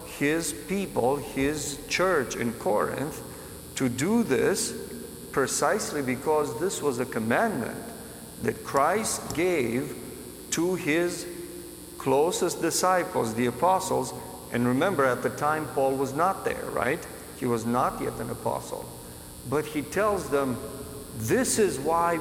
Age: 50-69